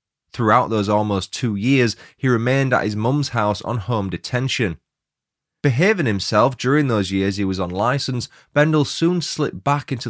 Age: 20-39